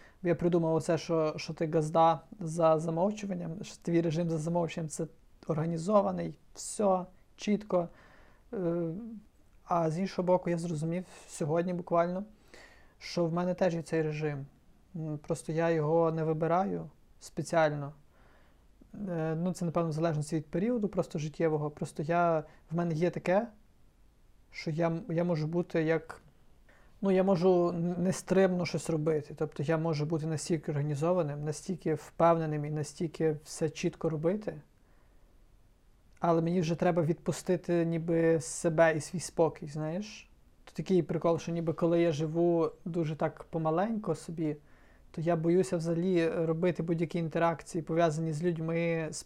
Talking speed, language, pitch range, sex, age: 135 wpm, Ukrainian, 160-175 Hz, male, 30-49